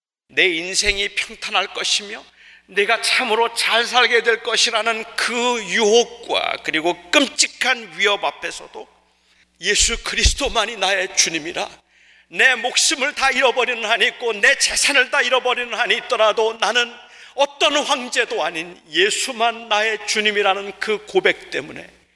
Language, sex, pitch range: Korean, male, 145-230 Hz